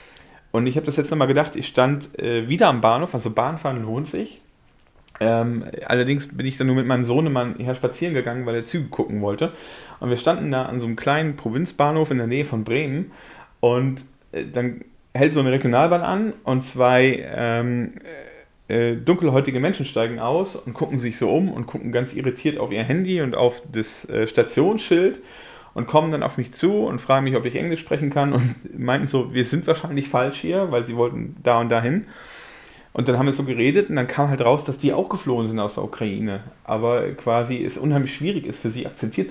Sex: male